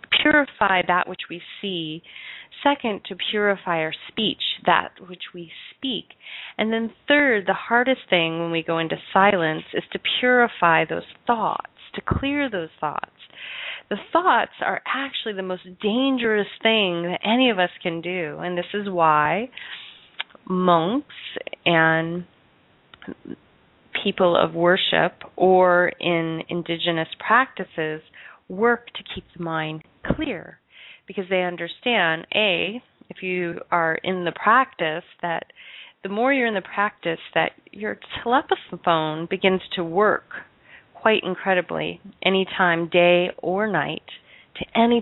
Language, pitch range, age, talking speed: English, 170-225 Hz, 30-49, 130 wpm